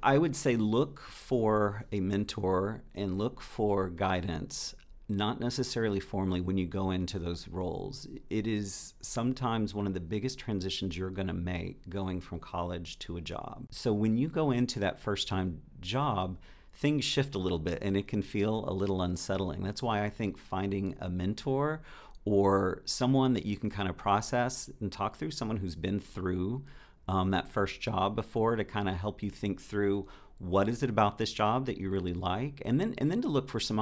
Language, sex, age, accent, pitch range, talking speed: English, male, 50-69, American, 95-115 Hz, 195 wpm